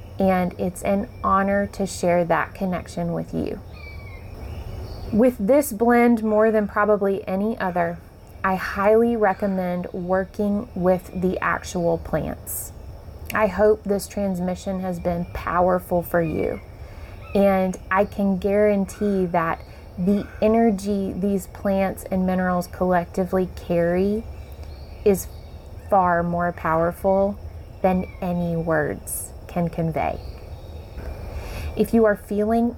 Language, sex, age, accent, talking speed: English, female, 20-39, American, 110 wpm